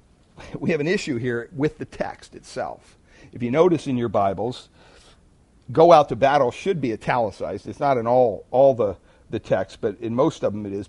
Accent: American